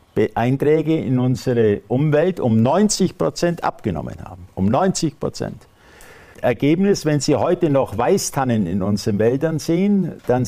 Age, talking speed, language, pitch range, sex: 50-69, 130 wpm, German, 110-150 Hz, male